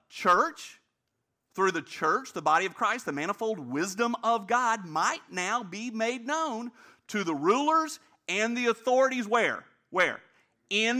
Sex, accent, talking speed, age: male, American, 145 wpm, 50-69